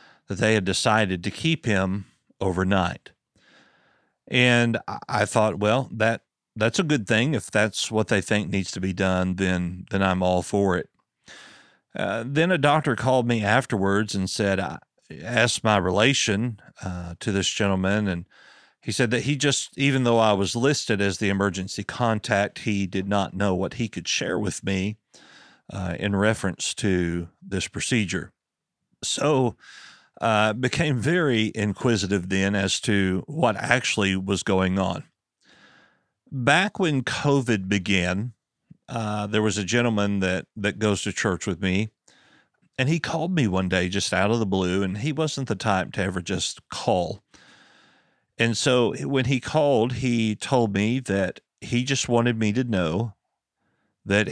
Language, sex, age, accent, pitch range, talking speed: English, male, 50-69, American, 95-120 Hz, 160 wpm